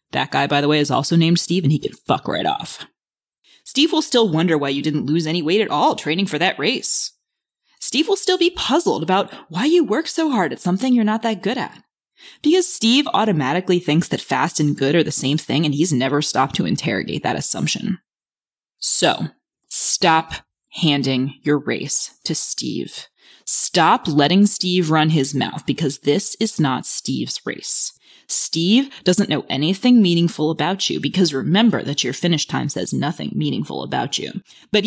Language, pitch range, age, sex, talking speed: English, 150-235 Hz, 20-39, female, 185 wpm